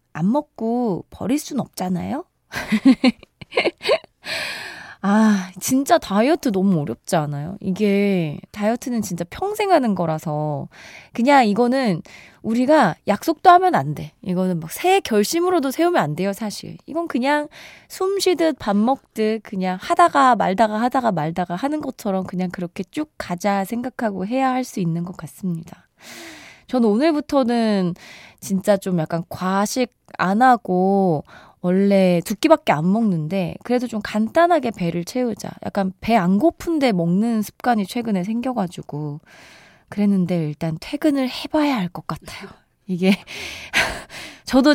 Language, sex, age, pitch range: Korean, female, 20-39, 180-260 Hz